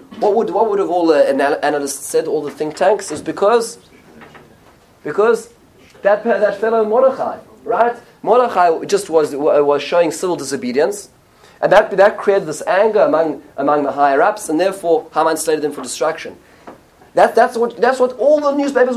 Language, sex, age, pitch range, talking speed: English, male, 30-49, 155-230 Hz, 170 wpm